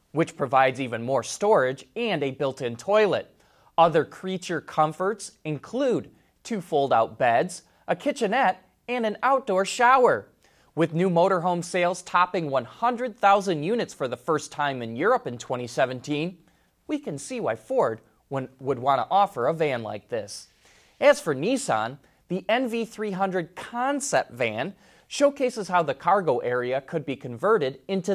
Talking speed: 140 wpm